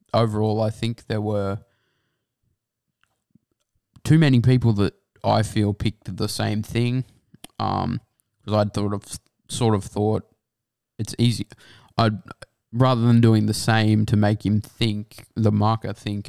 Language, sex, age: English, male, 20-39